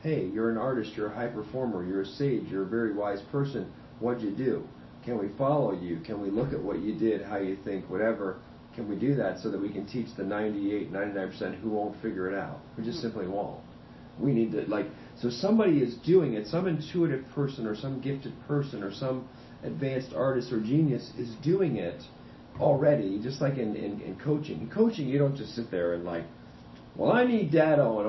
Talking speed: 215 wpm